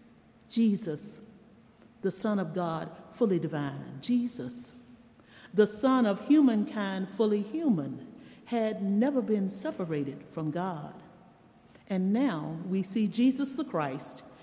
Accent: American